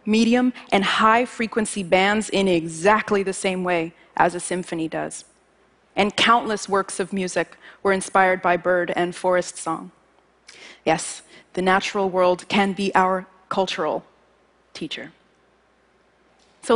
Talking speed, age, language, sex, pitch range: 125 wpm, 30-49, Russian, female, 180-225 Hz